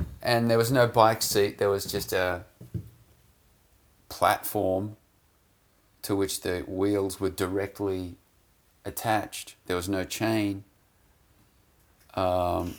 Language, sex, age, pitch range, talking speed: English, male, 40-59, 90-105 Hz, 110 wpm